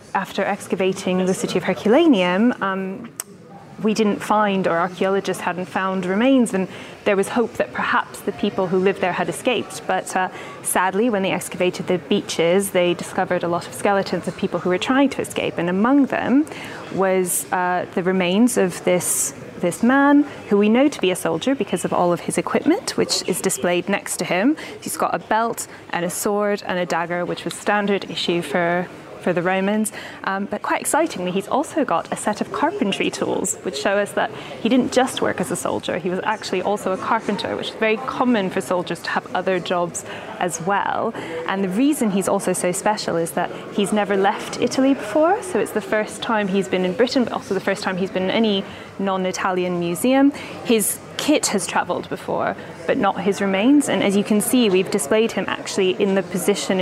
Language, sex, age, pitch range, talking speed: English, female, 10-29, 180-215 Hz, 205 wpm